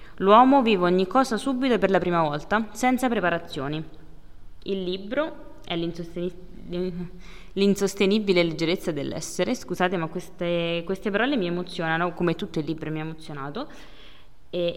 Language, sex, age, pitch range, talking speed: Italian, female, 20-39, 165-200 Hz, 135 wpm